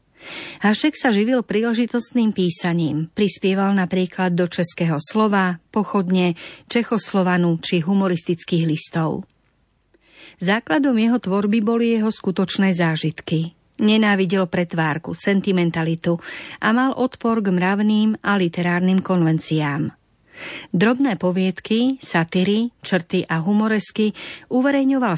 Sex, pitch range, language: female, 175-215 Hz, Slovak